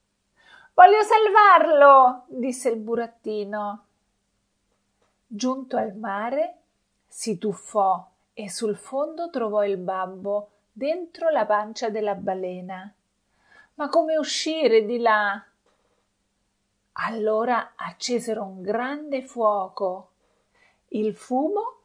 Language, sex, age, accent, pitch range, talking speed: Italian, female, 40-59, native, 190-245 Hz, 90 wpm